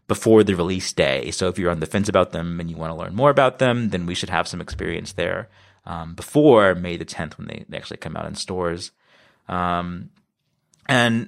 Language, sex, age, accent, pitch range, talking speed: English, male, 30-49, American, 85-110 Hz, 225 wpm